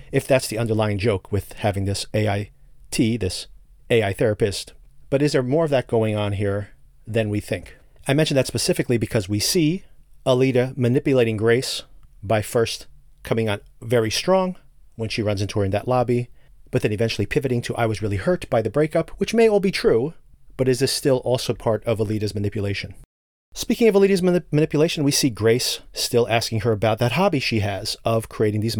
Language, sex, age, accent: English, male, 40-59, American